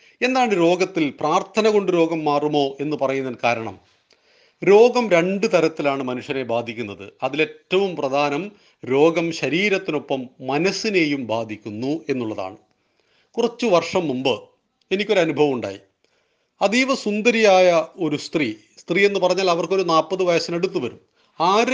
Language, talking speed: Malayalam, 110 wpm